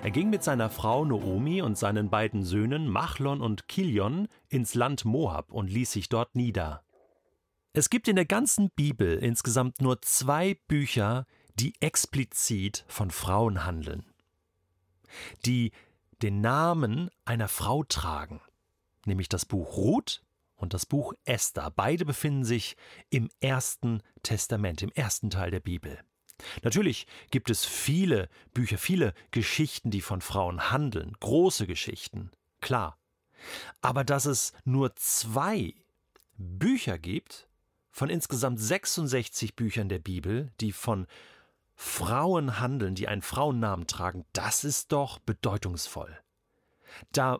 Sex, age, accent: male, 40-59, German